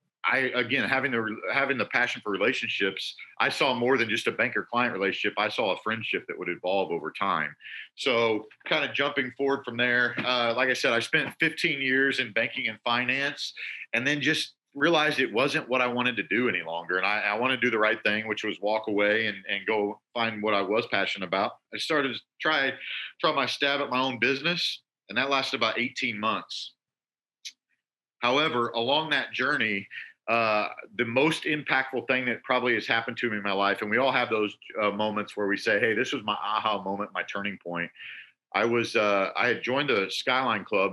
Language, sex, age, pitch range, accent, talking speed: English, male, 40-59, 105-125 Hz, American, 210 wpm